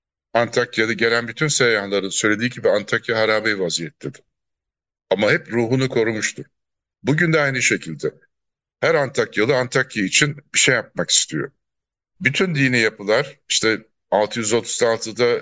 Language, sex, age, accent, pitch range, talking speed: Turkish, male, 60-79, native, 110-140 Hz, 115 wpm